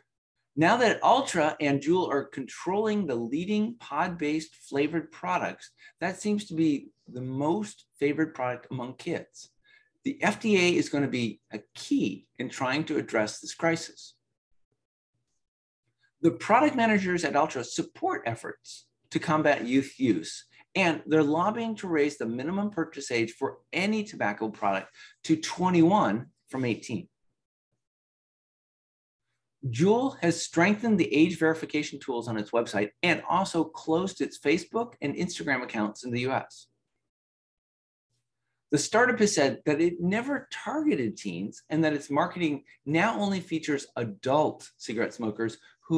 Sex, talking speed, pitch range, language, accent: male, 135 wpm, 125-190 Hz, English, American